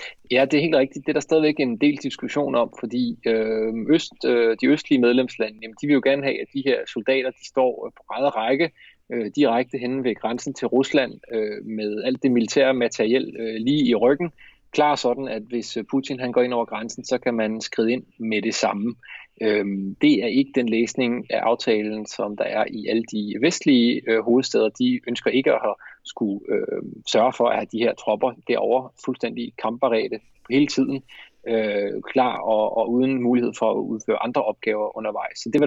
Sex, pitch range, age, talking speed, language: male, 110-135 Hz, 30-49, 200 wpm, Danish